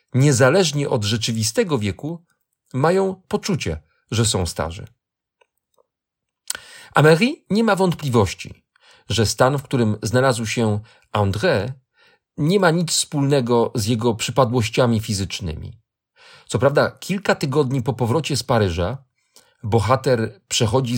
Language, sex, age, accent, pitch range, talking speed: Polish, male, 40-59, native, 115-170 Hz, 110 wpm